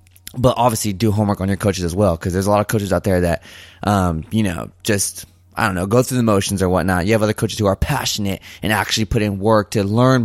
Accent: American